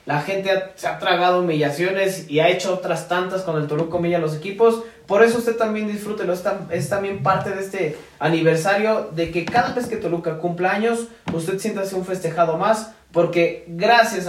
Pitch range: 160-200 Hz